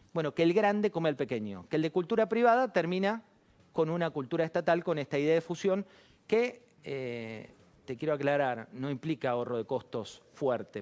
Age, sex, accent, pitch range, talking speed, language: 40-59, male, Argentinian, 140-195 Hz, 185 wpm, Spanish